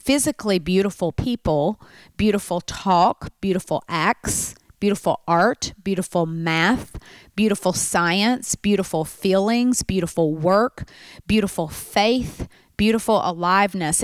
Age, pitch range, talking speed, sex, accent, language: 40-59, 175-230 Hz, 90 wpm, female, American, English